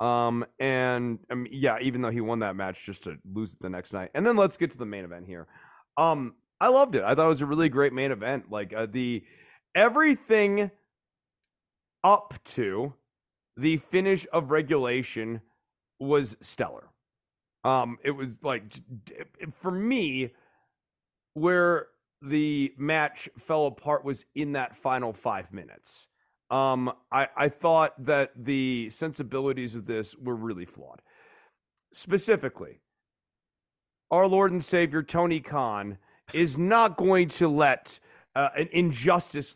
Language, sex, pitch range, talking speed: English, male, 115-160 Hz, 145 wpm